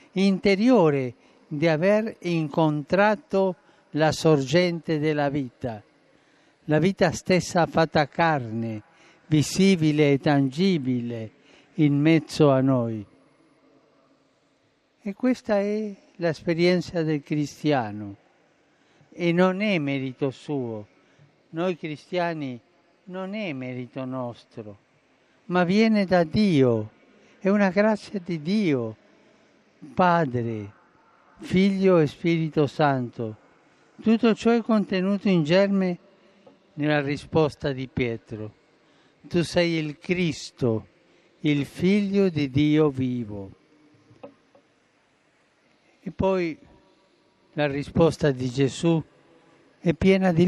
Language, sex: Italian, male